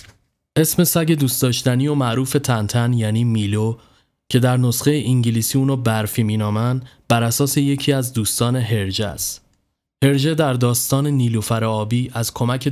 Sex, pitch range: male, 110-130 Hz